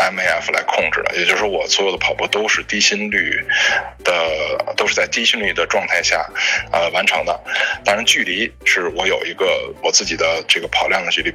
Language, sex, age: Chinese, male, 20-39